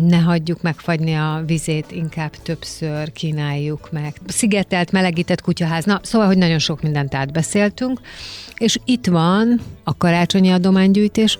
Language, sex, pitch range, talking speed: Hungarian, female, 145-175 Hz, 130 wpm